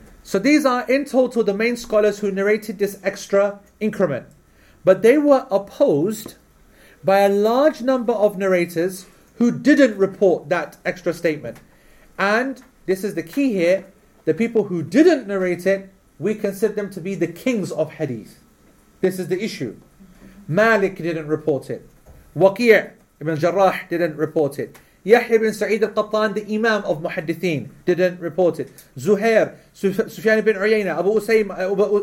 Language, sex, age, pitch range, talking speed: English, male, 40-59, 180-220 Hz, 155 wpm